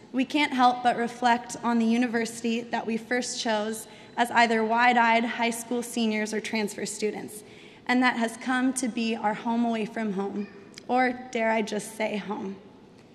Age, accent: 20-39, American